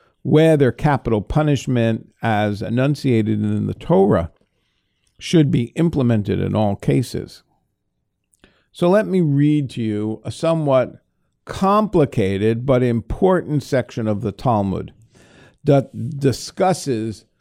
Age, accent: 50-69, American